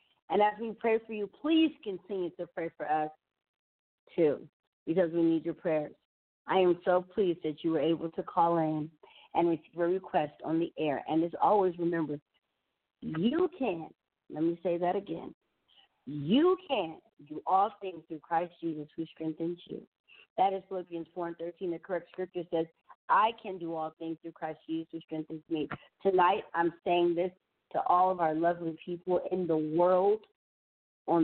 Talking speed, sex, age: 180 wpm, female, 40-59